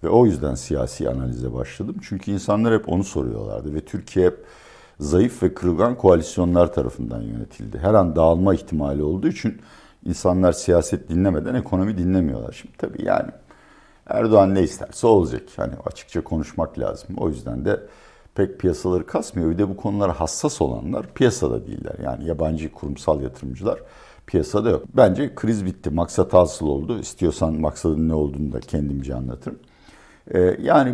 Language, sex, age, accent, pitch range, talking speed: Turkish, male, 60-79, native, 75-100 Hz, 145 wpm